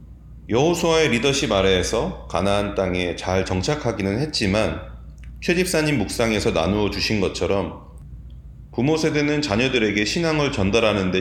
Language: Korean